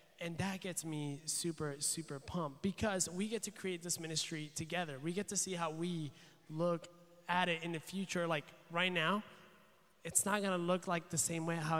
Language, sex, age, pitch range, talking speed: English, male, 20-39, 150-180 Hz, 205 wpm